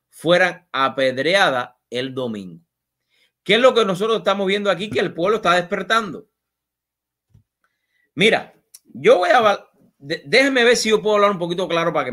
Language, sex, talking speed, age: English, male, 160 wpm, 30-49